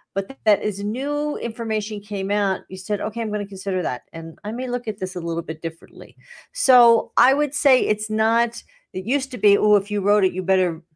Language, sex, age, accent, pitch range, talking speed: English, female, 40-59, American, 180-230 Hz, 230 wpm